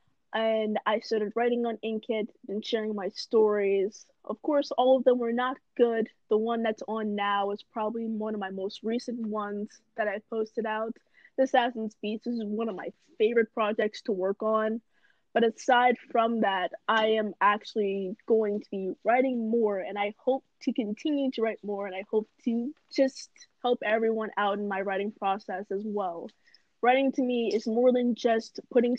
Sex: female